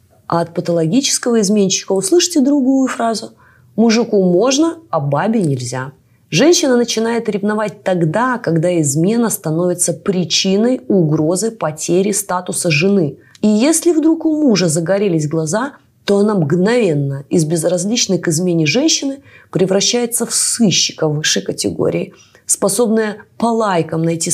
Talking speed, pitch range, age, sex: 120 wpm, 165-235 Hz, 20-39, female